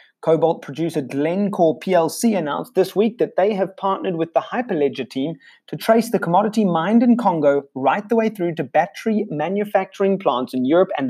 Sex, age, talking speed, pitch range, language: male, 30-49, 180 wpm, 140-205 Hz, English